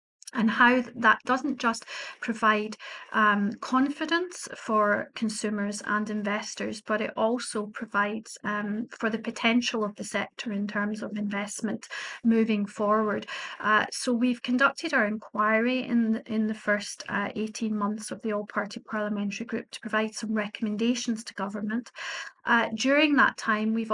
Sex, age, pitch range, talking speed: female, 40-59, 215-240 Hz, 150 wpm